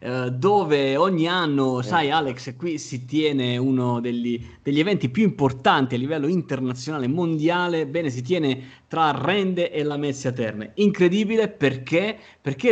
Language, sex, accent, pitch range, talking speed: Italian, male, native, 125-155 Hz, 135 wpm